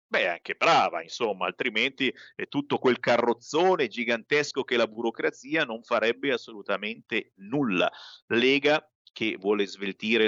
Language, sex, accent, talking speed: Italian, male, native, 125 wpm